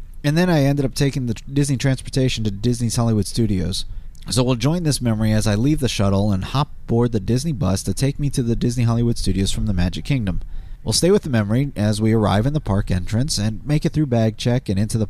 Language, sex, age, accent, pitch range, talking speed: English, male, 30-49, American, 95-125 Hz, 245 wpm